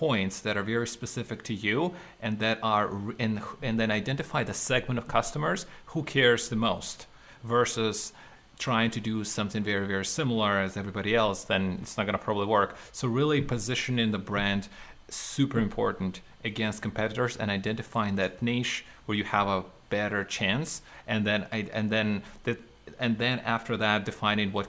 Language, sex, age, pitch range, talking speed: English, male, 30-49, 100-115 Hz, 175 wpm